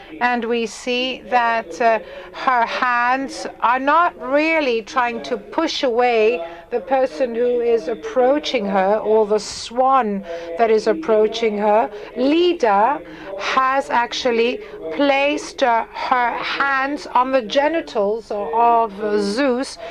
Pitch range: 220-270 Hz